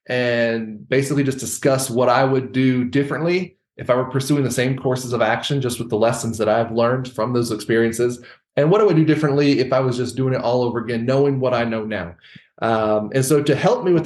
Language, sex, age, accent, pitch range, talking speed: English, male, 20-39, American, 115-145 Hz, 235 wpm